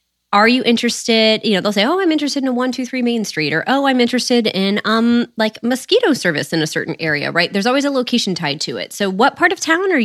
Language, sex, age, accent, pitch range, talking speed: English, female, 20-39, American, 180-250 Hz, 265 wpm